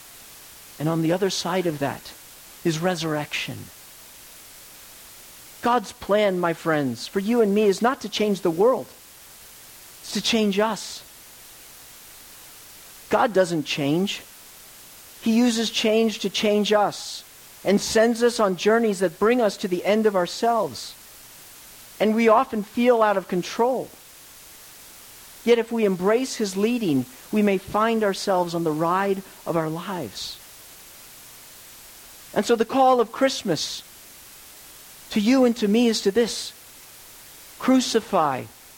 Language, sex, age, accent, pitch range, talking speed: English, male, 50-69, American, 165-220 Hz, 135 wpm